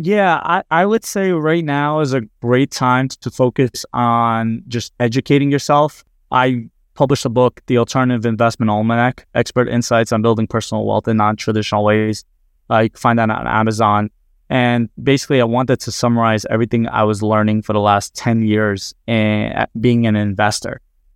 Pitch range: 110-125 Hz